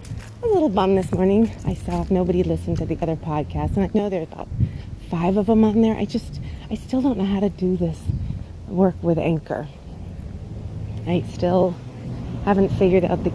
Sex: female